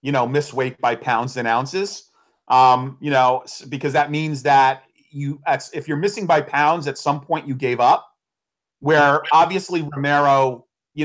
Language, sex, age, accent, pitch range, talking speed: English, male, 40-59, American, 135-165 Hz, 170 wpm